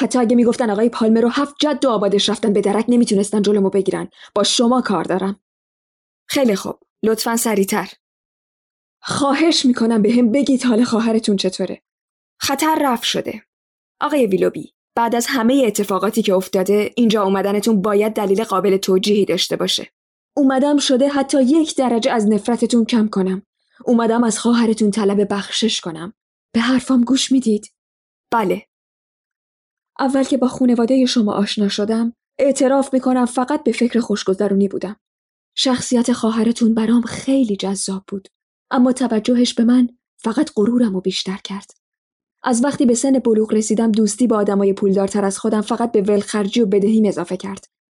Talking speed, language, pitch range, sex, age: 150 wpm, Persian, 205-255 Hz, female, 20-39